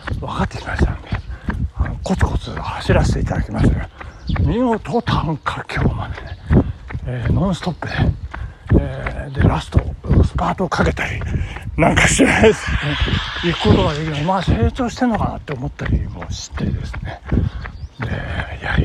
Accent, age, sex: native, 60-79, male